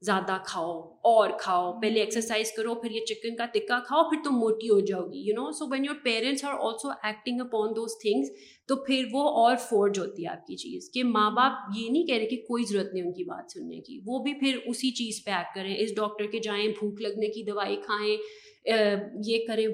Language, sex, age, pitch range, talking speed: Urdu, female, 30-49, 210-265 Hz, 230 wpm